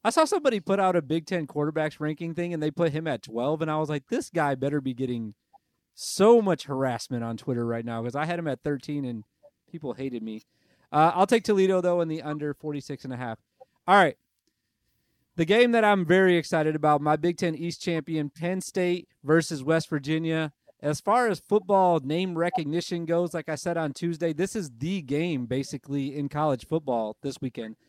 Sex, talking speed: male, 205 wpm